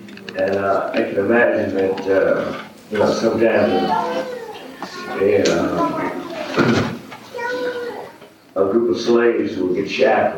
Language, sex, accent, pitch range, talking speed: English, male, American, 95-115 Hz, 95 wpm